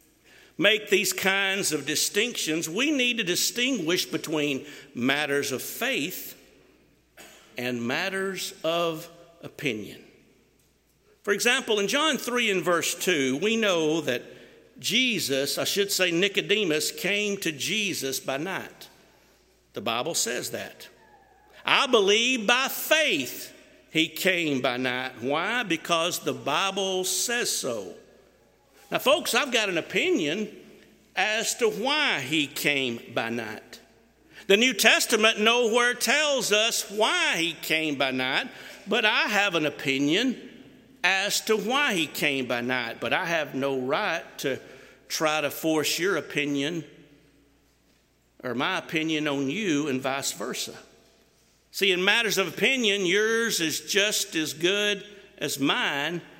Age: 60-79